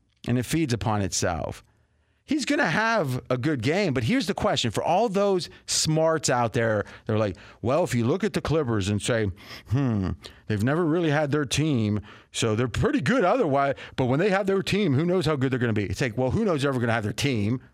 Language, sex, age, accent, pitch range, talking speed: English, male, 40-59, American, 120-170 Hz, 240 wpm